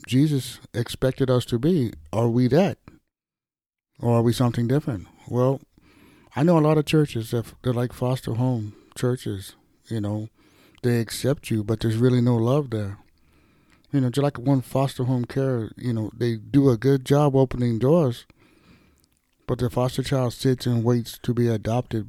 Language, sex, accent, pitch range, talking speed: English, male, American, 115-140 Hz, 175 wpm